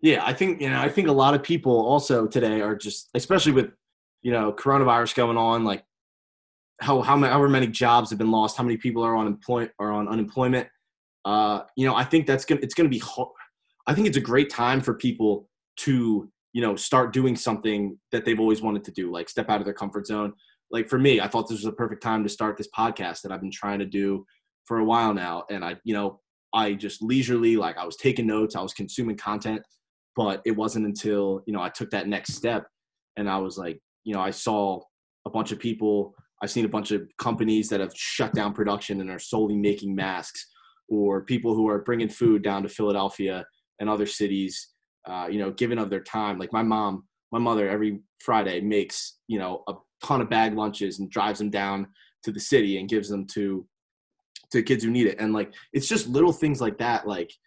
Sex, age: male, 20-39